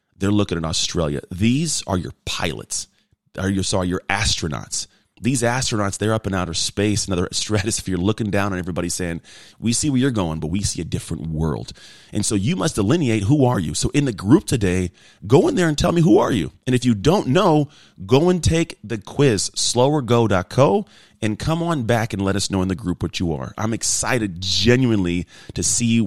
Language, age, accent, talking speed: English, 30-49, American, 210 wpm